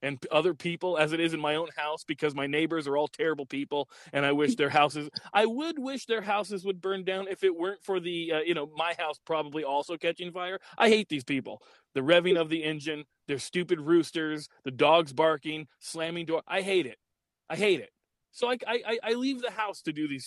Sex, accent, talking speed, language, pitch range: male, American, 230 wpm, English, 155-205 Hz